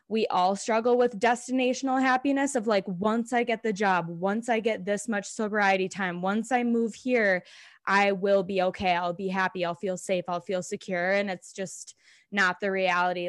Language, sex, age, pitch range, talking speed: English, female, 10-29, 185-215 Hz, 195 wpm